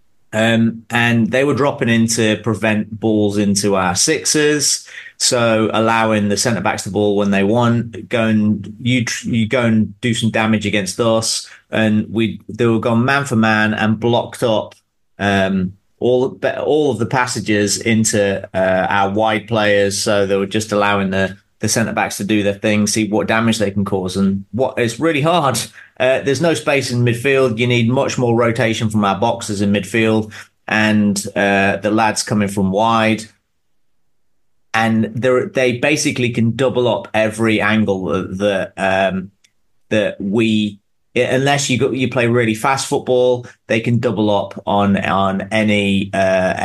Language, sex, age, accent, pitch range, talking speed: English, male, 30-49, British, 100-120 Hz, 170 wpm